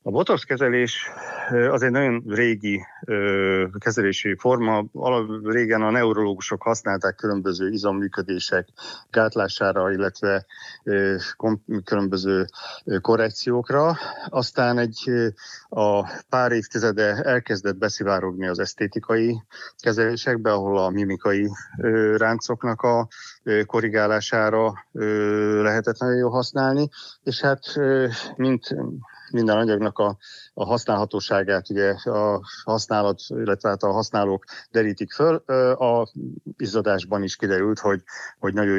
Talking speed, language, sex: 95 wpm, Hungarian, male